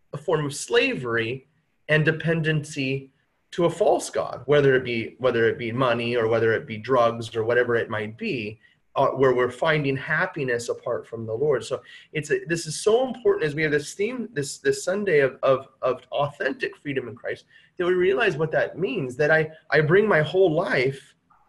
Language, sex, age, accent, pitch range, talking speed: English, male, 30-49, American, 130-185 Hz, 195 wpm